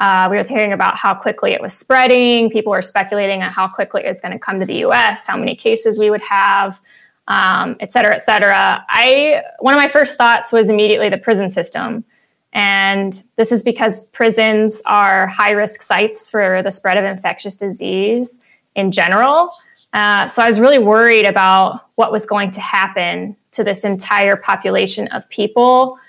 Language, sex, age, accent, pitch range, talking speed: English, female, 20-39, American, 200-235 Hz, 180 wpm